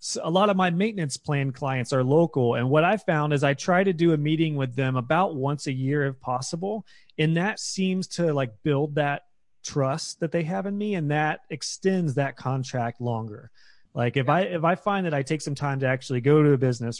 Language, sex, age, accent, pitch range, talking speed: English, male, 30-49, American, 130-170 Hz, 225 wpm